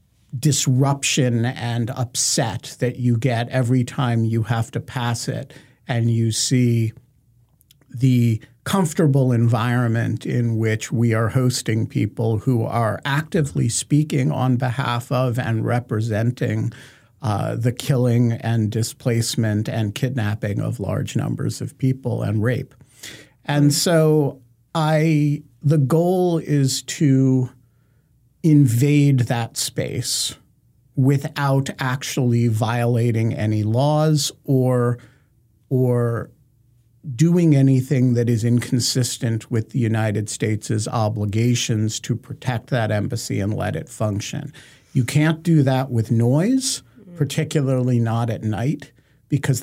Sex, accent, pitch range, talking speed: male, American, 115-140 Hz, 115 wpm